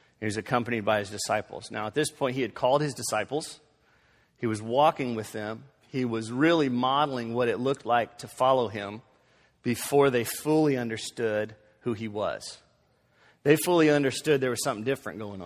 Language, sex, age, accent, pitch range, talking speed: English, male, 40-59, American, 115-140 Hz, 180 wpm